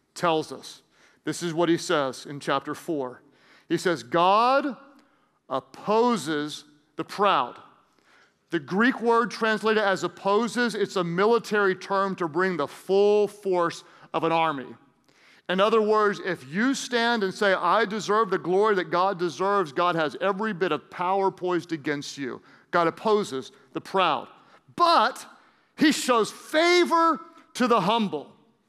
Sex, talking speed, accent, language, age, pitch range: male, 145 wpm, American, English, 40-59, 180-235 Hz